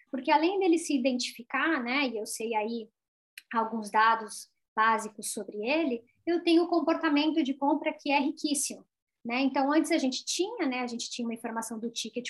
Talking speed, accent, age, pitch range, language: 185 wpm, Brazilian, 10-29, 245-315 Hz, Portuguese